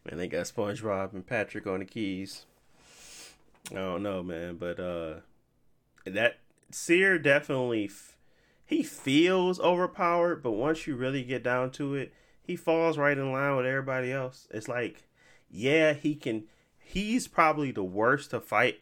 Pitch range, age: 100-155 Hz, 30-49